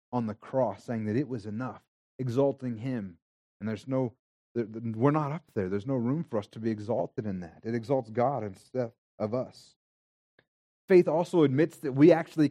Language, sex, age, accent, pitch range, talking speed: English, male, 30-49, American, 120-155 Hz, 185 wpm